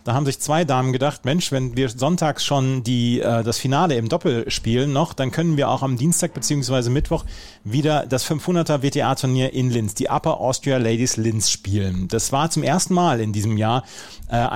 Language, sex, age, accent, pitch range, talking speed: German, male, 30-49, German, 115-150 Hz, 195 wpm